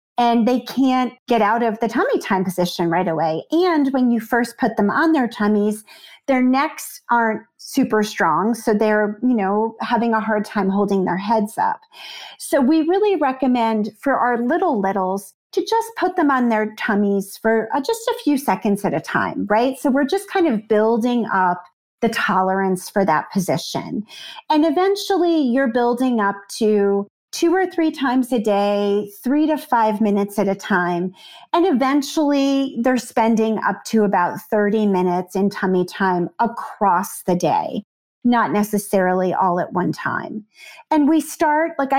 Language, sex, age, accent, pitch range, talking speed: English, female, 40-59, American, 205-275 Hz, 170 wpm